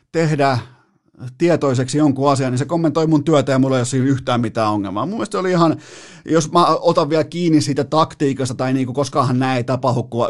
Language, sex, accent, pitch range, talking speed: Finnish, male, native, 120-150 Hz, 190 wpm